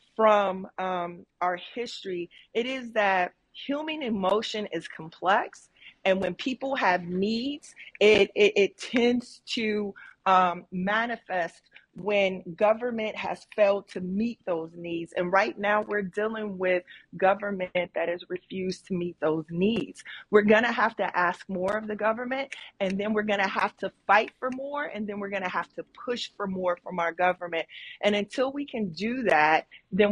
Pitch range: 180-220 Hz